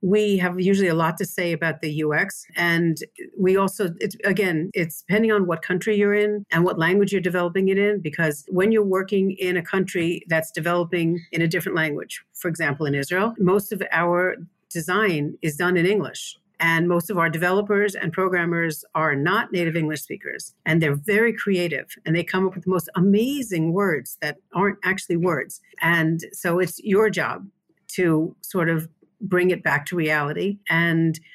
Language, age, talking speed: English, 50-69, 185 wpm